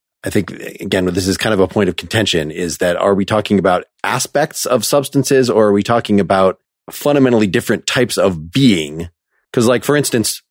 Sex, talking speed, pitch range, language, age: male, 195 wpm, 100-130 Hz, English, 30-49